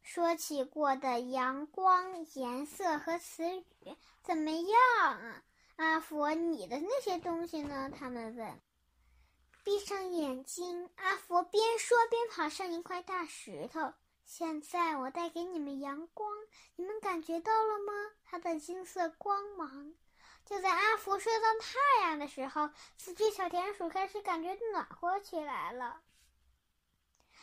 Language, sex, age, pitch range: Chinese, male, 10-29, 300-385 Hz